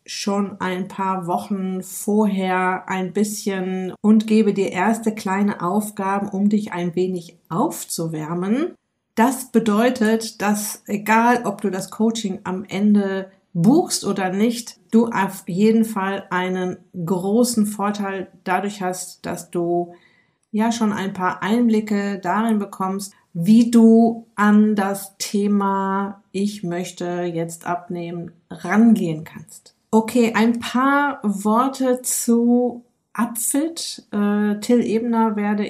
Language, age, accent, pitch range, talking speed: German, 50-69, German, 190-225 Hz, 115 wpm